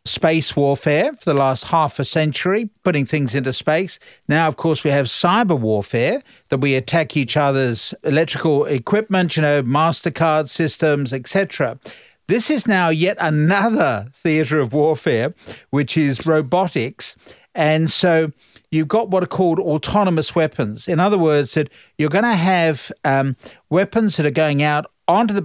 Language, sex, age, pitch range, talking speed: English, male, 50-69, 140-170 Hz, 160 wpm